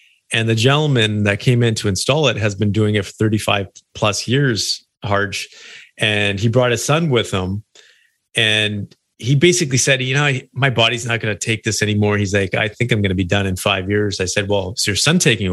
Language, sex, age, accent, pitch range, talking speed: English, male, 30-49, American, 105-135 Hz, 225 wpm